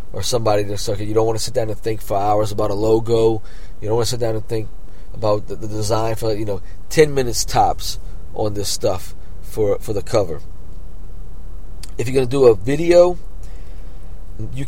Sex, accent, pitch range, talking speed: male, American, 85-115 Hz, 205 wpm